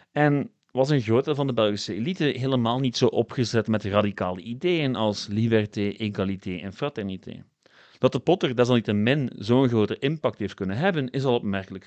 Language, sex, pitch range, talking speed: Dutch, male, 100-135 Hz, 170 wpm